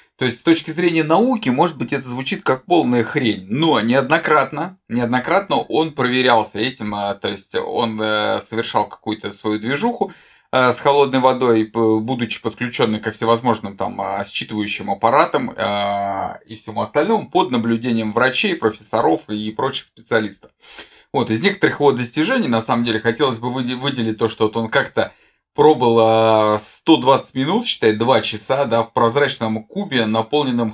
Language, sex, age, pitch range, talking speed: Russian, male, 20-39, 110-135 Hz, 145 wpm